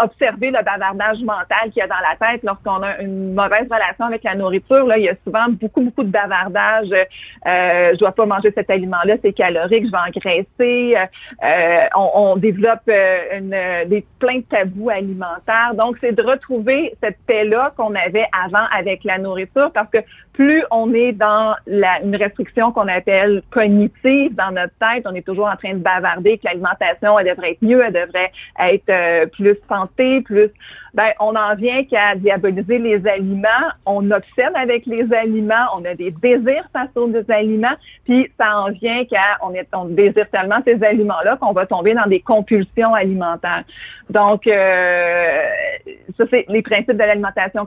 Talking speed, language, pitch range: 175 wpm, French, 190-230 Hz